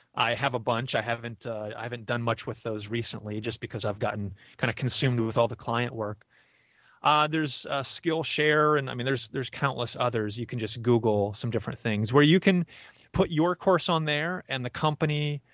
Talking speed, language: 210 wpm, English